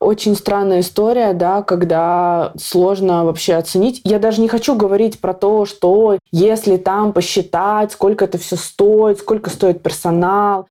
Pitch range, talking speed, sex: 175-215 Hz, 145 wpm, female